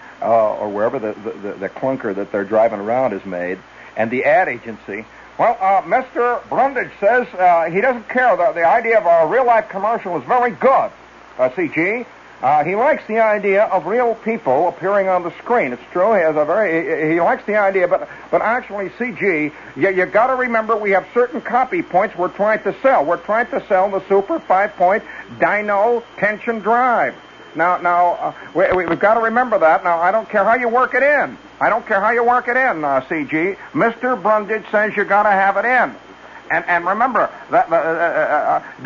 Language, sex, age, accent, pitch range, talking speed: English, male, 60-79, American, 185-245 Hz, 205 wpm